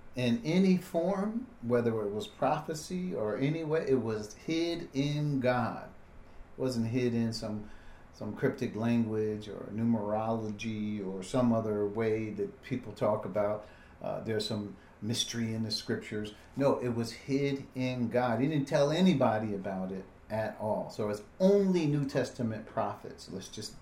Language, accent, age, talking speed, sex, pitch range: English, American, 50-69, 155 wpm, male, 105-135 Hz